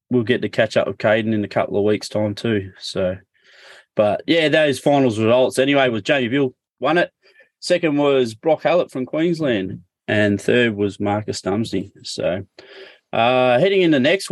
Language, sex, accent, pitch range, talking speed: English, male, Australian, 110-140 Hz, 170 wpm